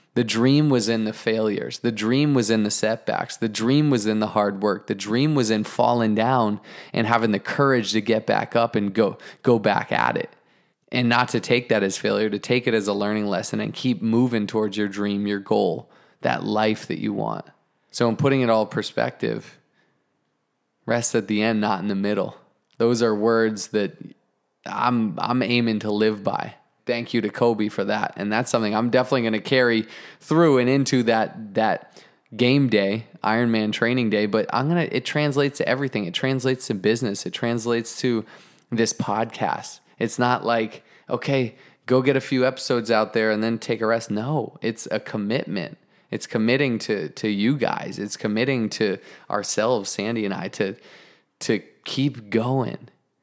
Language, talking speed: English, 190 wpm